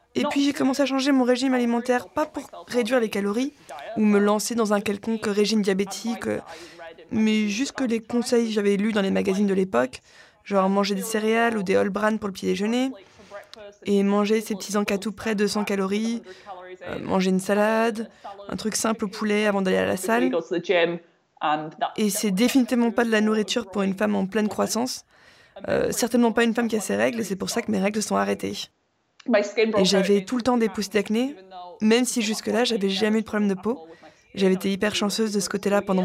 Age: 20-39